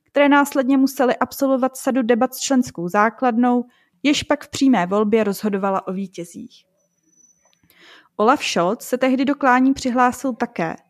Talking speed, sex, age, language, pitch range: 130 wpm, female, 20-39, Czech, 215-260 Hz